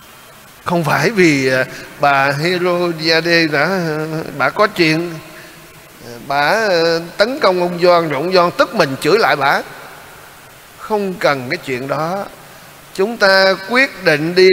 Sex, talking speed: male, 130 wpm